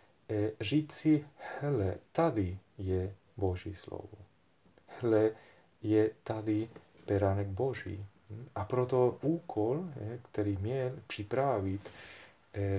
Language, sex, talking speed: Czech, male, 85 wpm